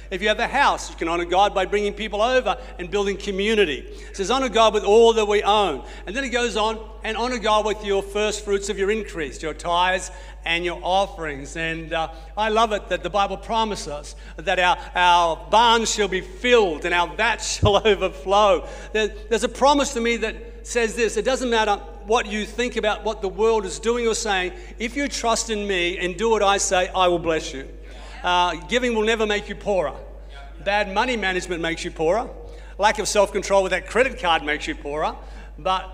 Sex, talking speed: male, 215 wpm